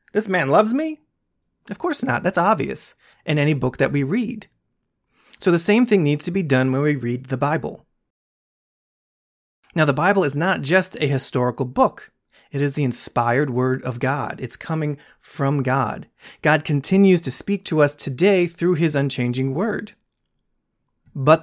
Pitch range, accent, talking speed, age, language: 135-180 Hz, American, 170 wpm, 30-49, English